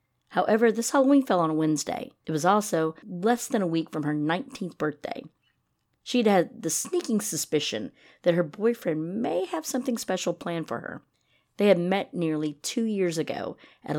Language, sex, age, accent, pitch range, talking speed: English, female, 40-59, American, 155-205 Hz, 175 wpm